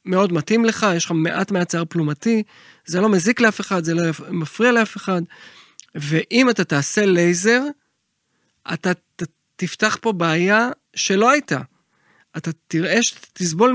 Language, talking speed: Hebrew, 150 wpm